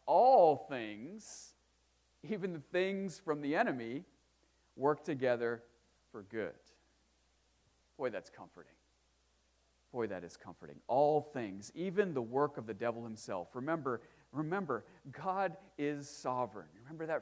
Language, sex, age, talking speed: English, male, 40-59, 120 wpm